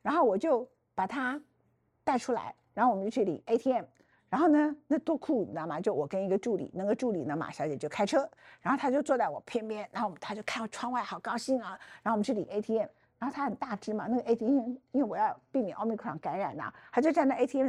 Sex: female